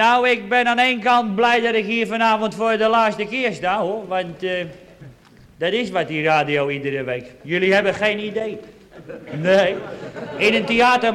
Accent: Dutch